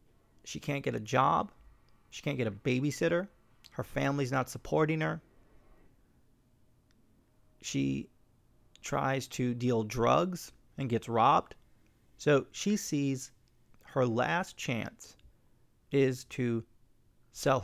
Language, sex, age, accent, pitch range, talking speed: English, male, 30-49, American, 110-135 Hz, 110 wpm